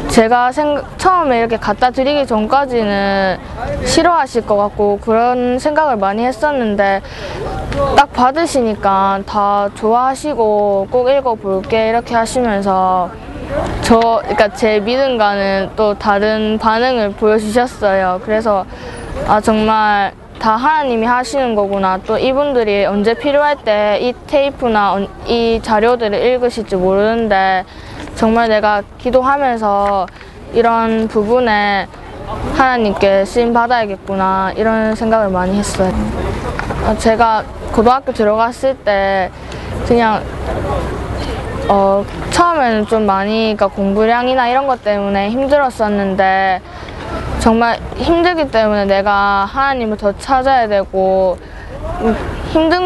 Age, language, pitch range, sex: 20-39, Korean, 200-250 Hz, female